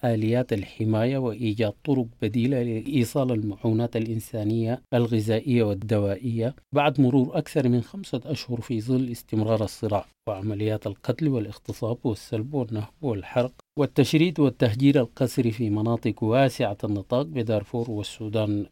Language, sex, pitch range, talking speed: English, male, 110-125 Hz, 110 wpm